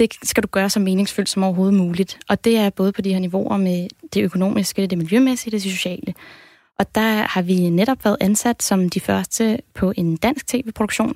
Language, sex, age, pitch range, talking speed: Danish, female, 20-39, 190-220 Hz, 205 wpm